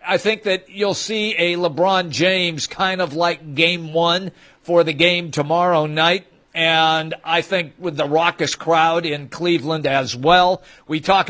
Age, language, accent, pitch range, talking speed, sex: 50-69, English, American, 150-185 Hz, 165 wpm, male